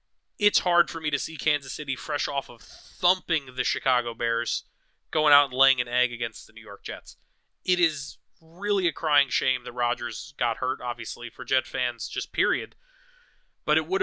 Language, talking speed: English, 195 wpm